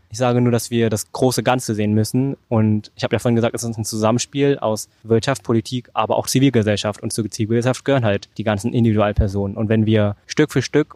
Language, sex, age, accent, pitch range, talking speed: German, male, 20-39, German, 110-125 Hz, 220 wpm